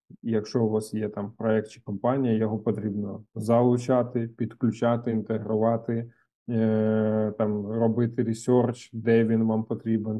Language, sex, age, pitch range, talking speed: Ukrainian, male, 20-39, 110-125 Hz, 125 wpm